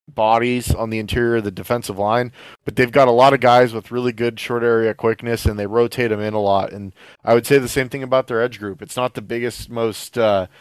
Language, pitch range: English, 110-125 Hz